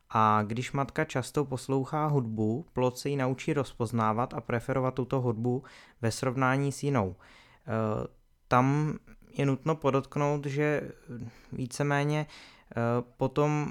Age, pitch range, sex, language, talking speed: 20-39, 115-135 Hz, male, Czech, 125 wpm